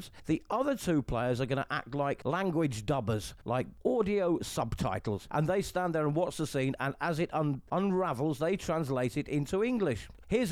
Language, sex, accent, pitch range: English, male, British, 140-185 Hz